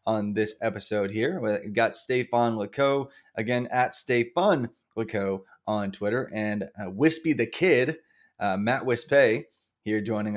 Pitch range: 110-140 Hz